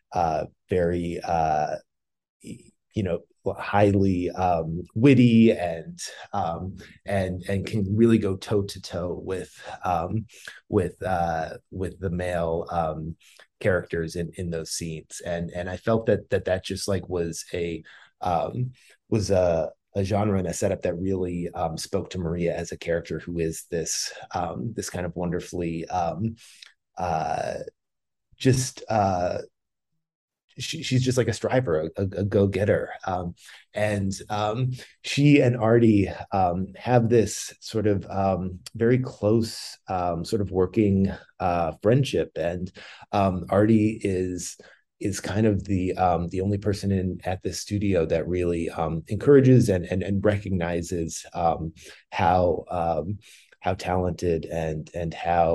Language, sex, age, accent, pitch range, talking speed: English, male, 30-49, American, 85-105 Hz, 145 wpm